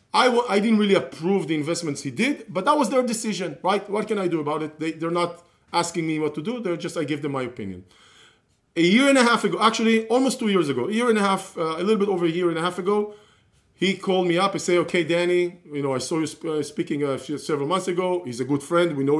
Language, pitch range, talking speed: English, 150-200 Hz, 285 wpm